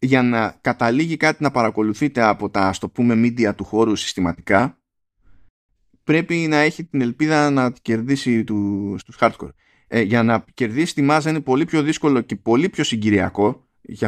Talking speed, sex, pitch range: 170 wpm, male, 100-130 Hz